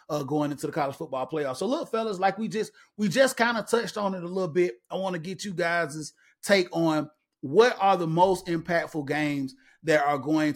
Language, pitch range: English, 150-195 Hz